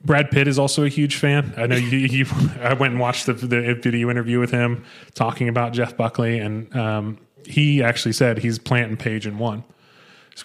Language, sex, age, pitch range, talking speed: English, male, 20-39, 115-130 Hz, 220 wpm